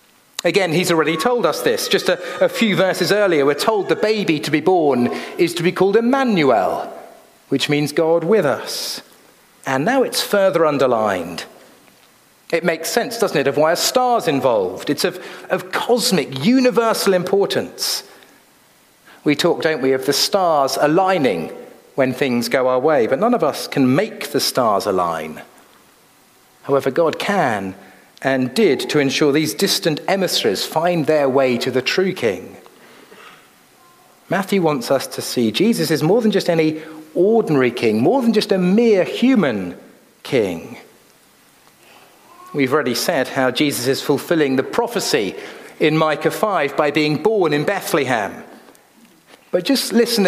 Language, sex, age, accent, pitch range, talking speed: English, male, 40-59, British, 145-215 Hz, 155 wpm